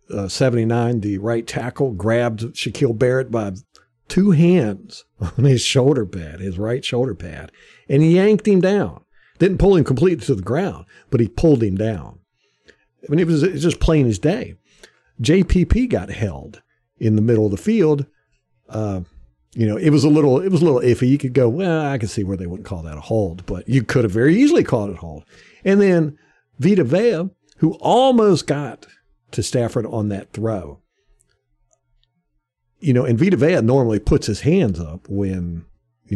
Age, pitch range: 50-69, 100-150 Hz